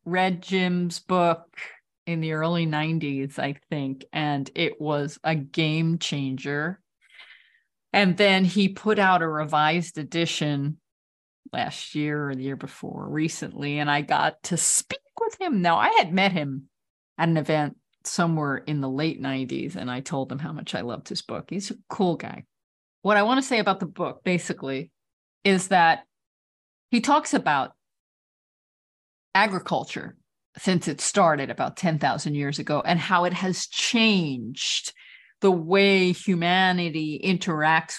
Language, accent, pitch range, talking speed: English, American, 150-190 Hz, 150 wpm